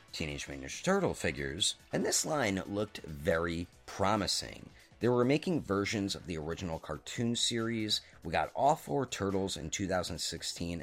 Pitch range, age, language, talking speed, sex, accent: 80-120 Hz, 30-49, English, 145 wpm, male, American